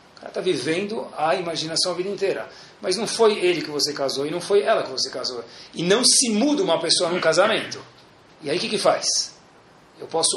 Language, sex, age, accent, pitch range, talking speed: Portuguese, male, 40-59, Brazilian, 135-205 Hz, 220 wpm